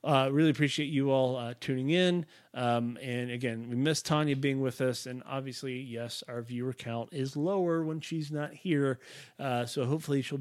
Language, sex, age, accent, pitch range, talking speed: English, male, 30-49, American, 120-145 Hz, 190 wpm